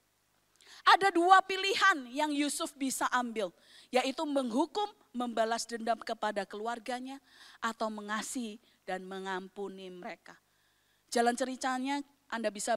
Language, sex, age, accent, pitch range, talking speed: English, female, 20-39, Indonesian, 230-380 Hz, 105 wpm